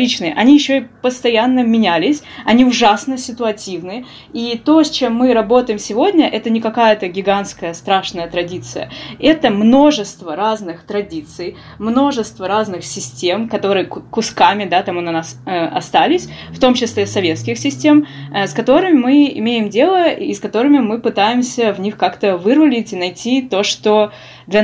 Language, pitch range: Russian, 195-255 Hz